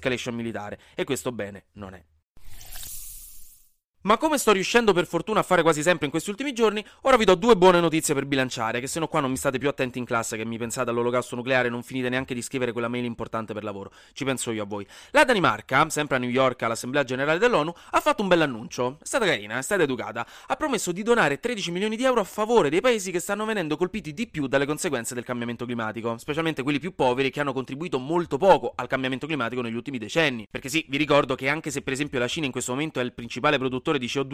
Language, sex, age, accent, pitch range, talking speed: Italian, male, 30-49, native, 120-165 Hz, 245 wpm